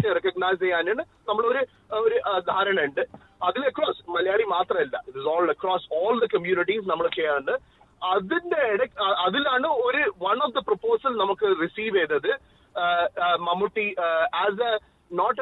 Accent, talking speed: native, 145 wpm